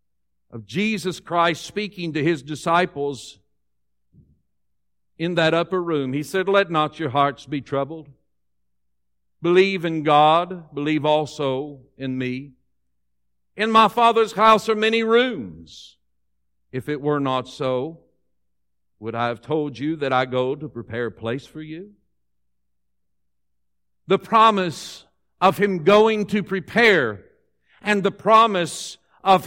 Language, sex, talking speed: English, male, 130 wpm